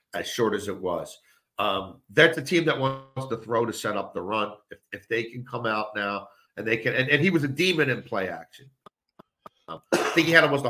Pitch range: 110-140 Hz